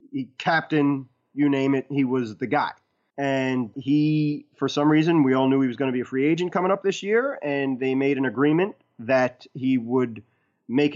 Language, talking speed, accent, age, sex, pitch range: English, 210 wpm, American, 30-49, male, 125-150 Hz